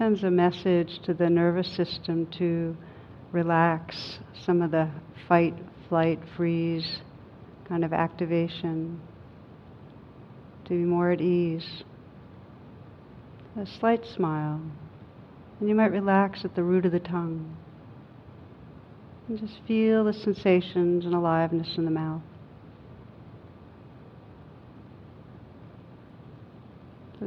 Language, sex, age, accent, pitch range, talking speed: English, female, 60-79, American, 160-180 Hz, 105 wpm